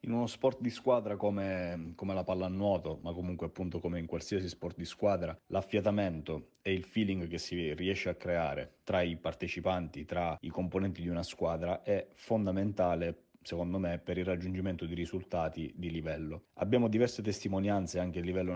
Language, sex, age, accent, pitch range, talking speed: Italian, male, 30-49, native, 85-95 Hz, 170 wpm